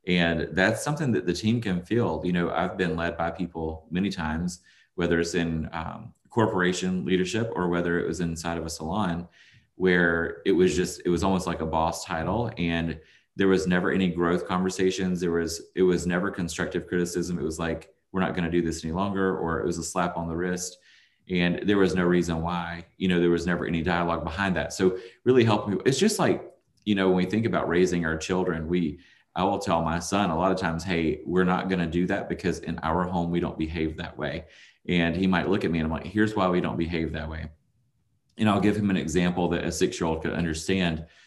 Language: English